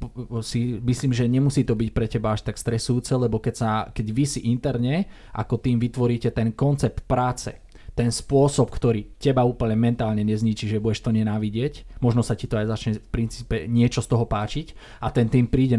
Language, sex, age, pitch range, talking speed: Slovak, male, 20-39, 110-120 Hz, 195 wpm